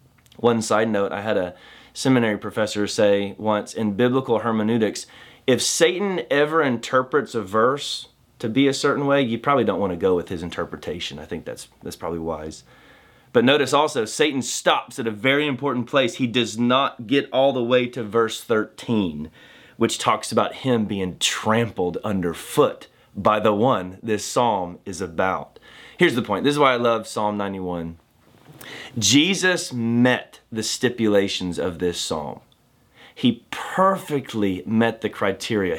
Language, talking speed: English, 160 wpm